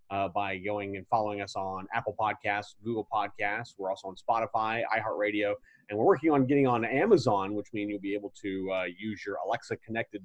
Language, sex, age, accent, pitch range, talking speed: English, male, 30-49, American, 105-130 Hz, 195 wpm